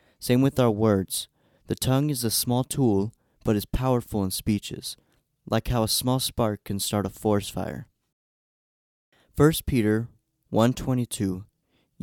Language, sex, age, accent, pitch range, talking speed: English, male, 30-49, American, 105-125 Hz, 140 wpm